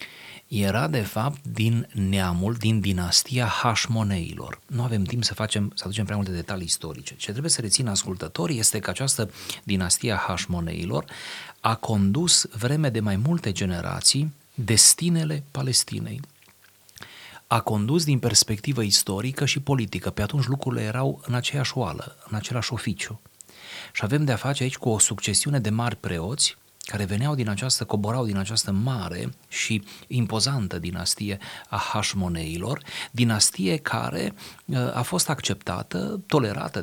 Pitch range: 95-125 Hz